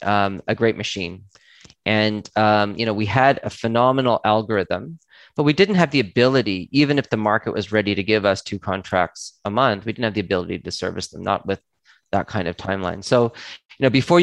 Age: 30-49